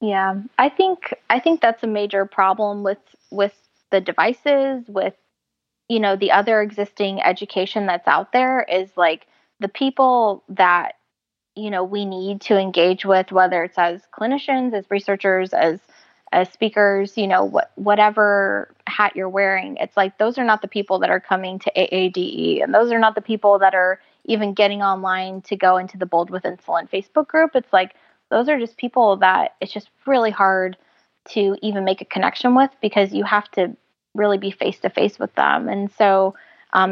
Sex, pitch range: female, 190-225 Hz